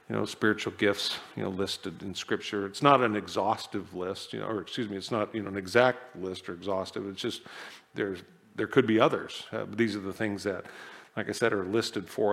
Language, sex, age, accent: English, male, 50-69, American